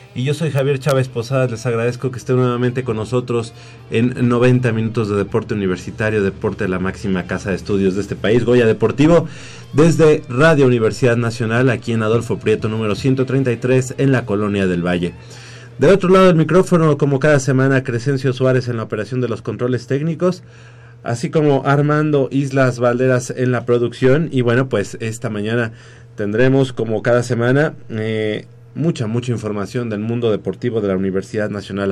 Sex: male